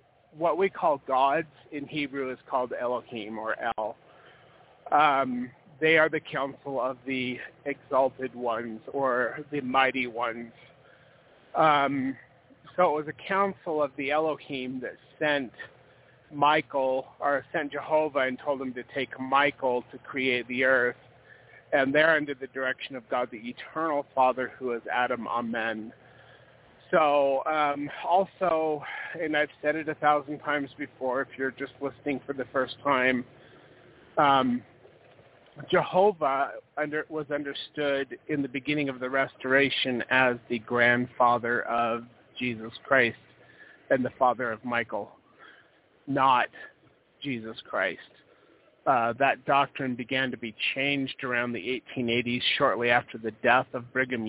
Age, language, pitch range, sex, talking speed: 30-49, English, 125-145 Hz, male, 135 wpm